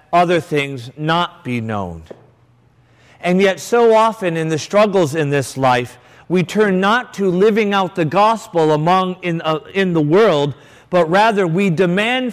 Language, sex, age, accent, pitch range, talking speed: English, male, 50-69, American, 130-185 Hz, 160 wpm